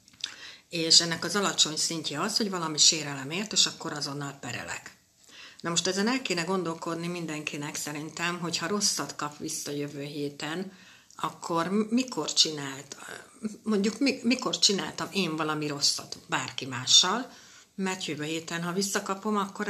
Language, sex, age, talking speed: Hungarian, female, 60-79, 140 wpm